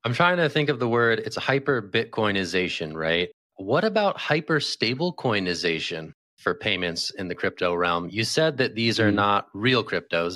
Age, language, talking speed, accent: 30-49, English, 160 wpm, American